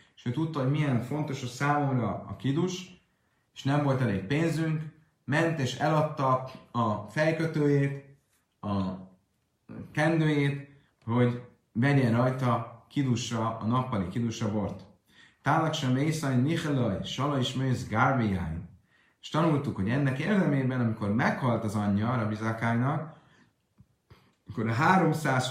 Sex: male